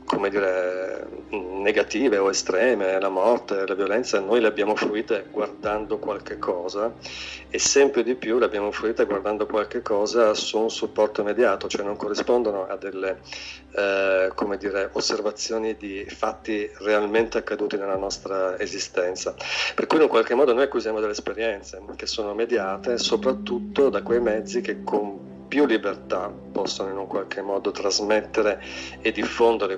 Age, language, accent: 40-59, Italian, native